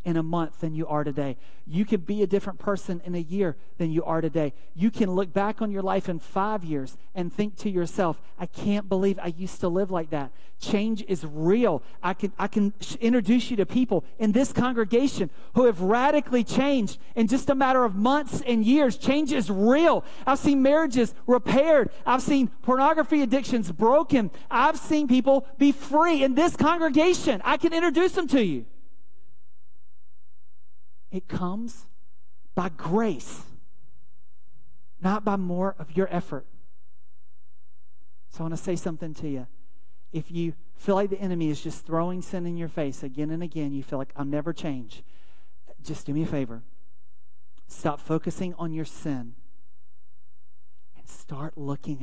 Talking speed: 170 wpm